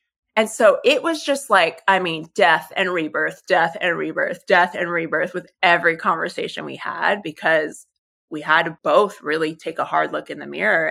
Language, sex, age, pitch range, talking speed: English, female, 20-39, 165-230 Hz, 195 wpm